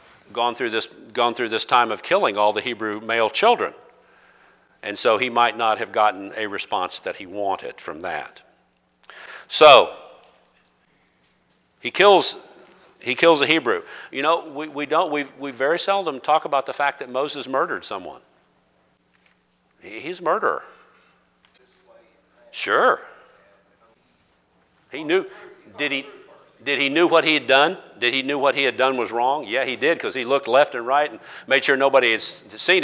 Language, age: English, 50-69